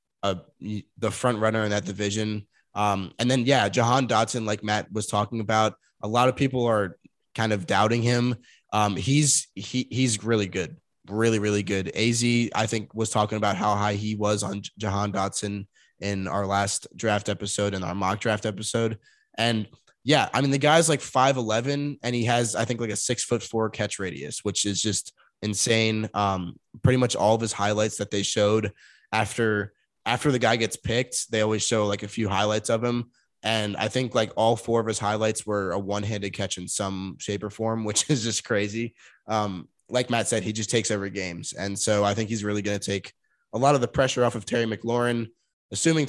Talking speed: 205 wpm